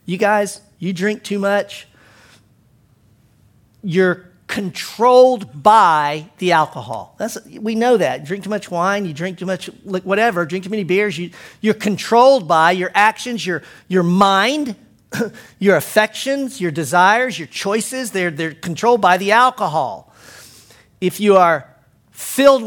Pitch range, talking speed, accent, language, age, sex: 160-210 Hz, 135 wpm, American, English, 50-69, male